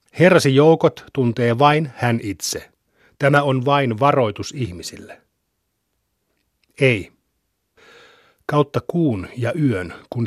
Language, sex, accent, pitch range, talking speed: Finnish, male, native, 110-135 Hz, 100 wpm